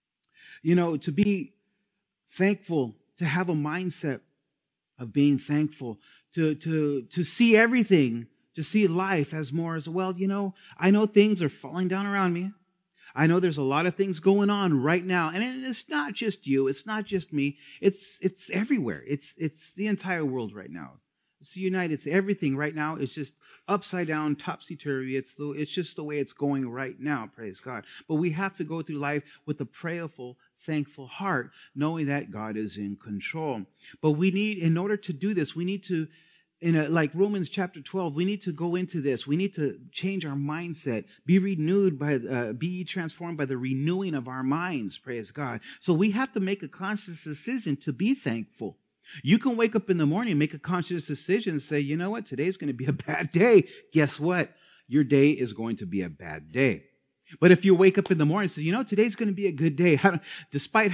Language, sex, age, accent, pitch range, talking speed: English, male, 30-49, American, 145-195 Hz, 210 wpm